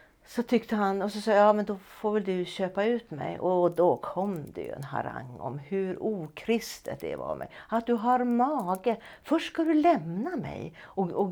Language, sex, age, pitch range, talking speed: Swedish, female, 60-79, 155-215 Hz, 210 wpm